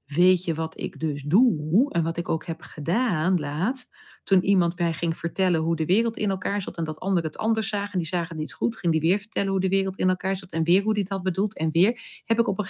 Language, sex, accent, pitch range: Dutch, female, Dutch, 180-245 Hz